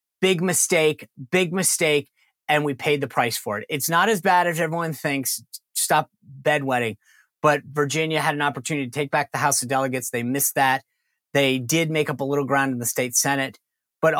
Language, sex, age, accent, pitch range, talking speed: English, male, 30-49, American, 130-150 Hz, 200 wpm